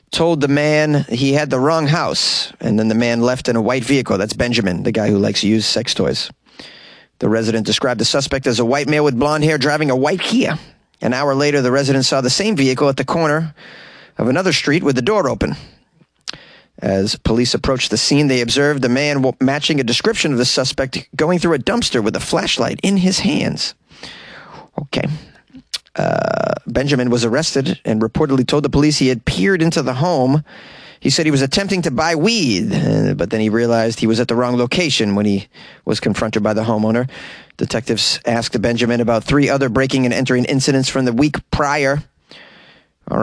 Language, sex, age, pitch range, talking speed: English, male, 30-49, 125-150 Hz, 200 wpm